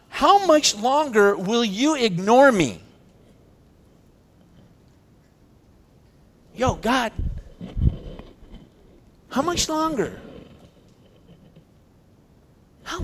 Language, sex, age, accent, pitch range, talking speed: English, male, 40-59, American, 145-200 Hz, 60 wpm